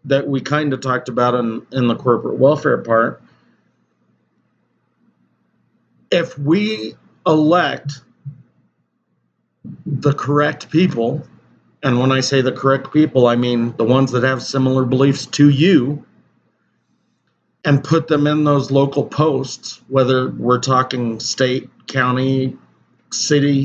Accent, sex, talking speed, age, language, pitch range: American, male, 120 wpm, 40-59, English, 120-145 Hz